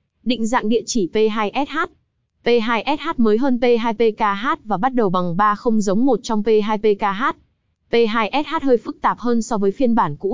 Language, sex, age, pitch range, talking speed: Vietnamese, female, 20-39, 205-255 Hz, 170 wpm